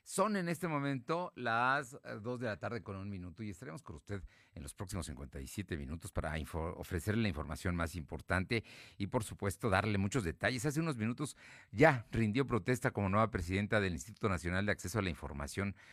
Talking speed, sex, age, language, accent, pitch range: 190 wpm, male, 50-69, Spanish, Mexican, 90-125 Hz